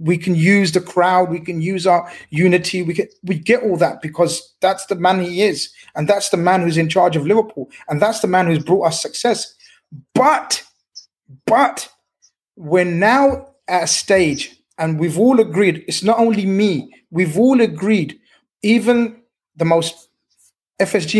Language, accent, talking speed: English, British, 170 wpm